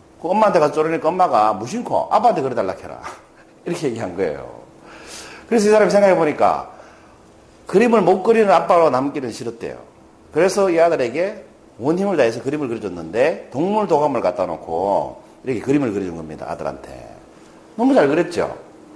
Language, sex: Korean, male